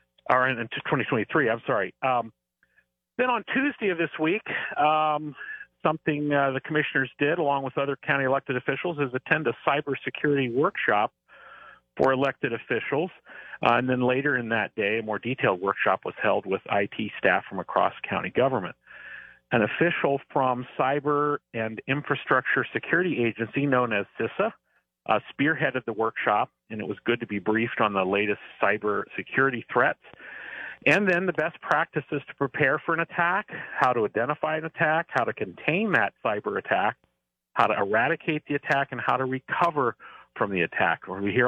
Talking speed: 165 wpm